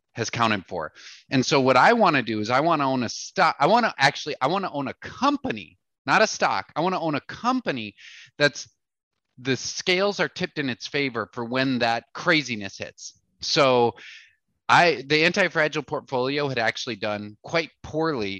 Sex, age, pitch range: male, 30-49, 125-180 Hz